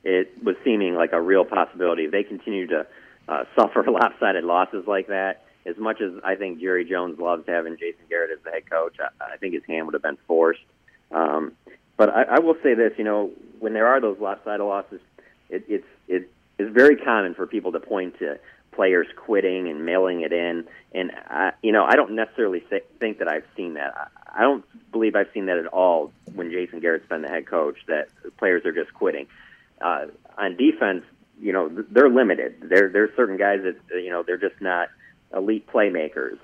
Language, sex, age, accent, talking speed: English, male, 40-59, American, 205 wpm